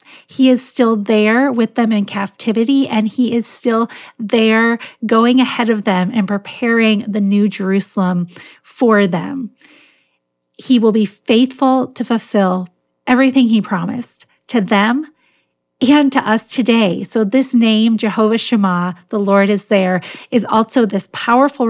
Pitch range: 200-250 Hz